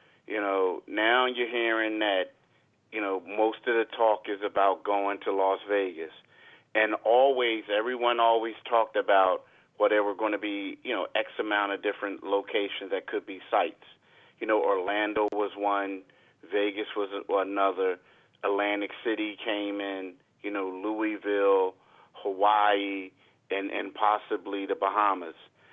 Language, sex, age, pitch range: English, male, 40-59, 100-115 Hz